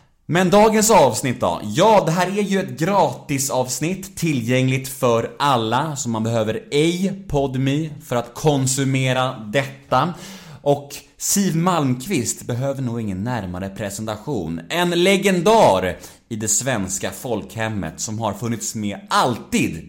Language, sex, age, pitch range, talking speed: Swedish, male, 30-49, 105-160 Hz, 130 wpm